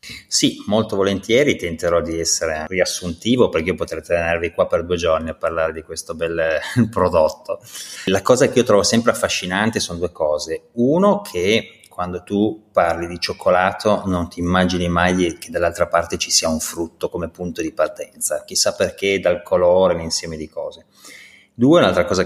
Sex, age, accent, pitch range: male, 30-49, native, 80-90 Hz